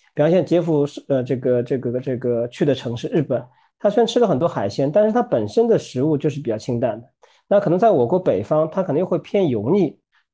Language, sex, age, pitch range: Chinese, male, 40-59, 120-165 Hz